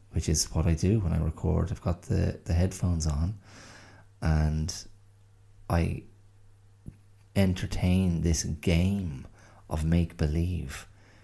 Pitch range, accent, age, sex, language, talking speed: 80-100 Hz, Irish, 30-49, male, English, 110 wpm